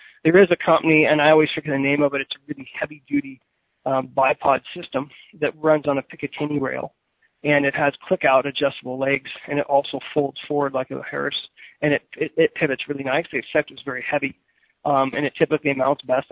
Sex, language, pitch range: male, English, 140-160 Hz